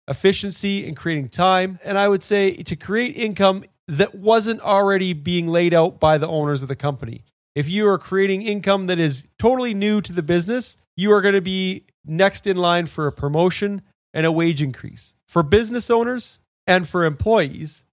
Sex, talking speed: male, 185 wpm